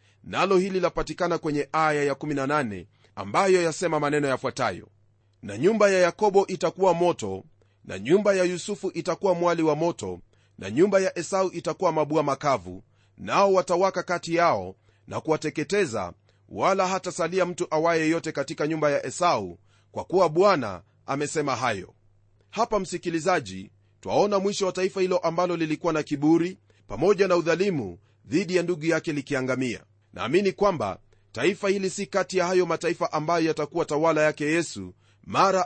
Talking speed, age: 145 wpm, 30-49